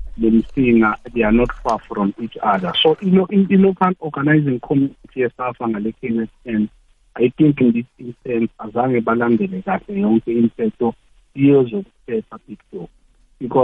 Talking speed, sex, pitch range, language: 120 wpm, male, 120-150 Hz, English